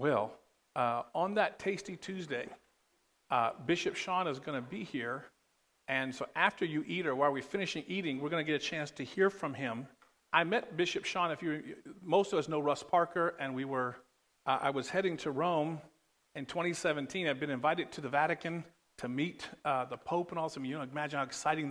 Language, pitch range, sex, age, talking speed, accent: English, 130-165 Hz, male, 50-69, 215 wpm, American